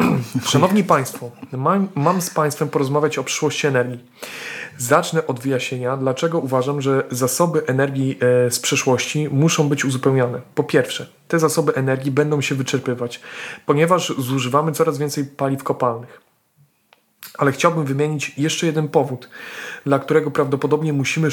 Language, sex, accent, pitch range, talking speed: Polish, male, native, 130-155 Hz, 130 wpm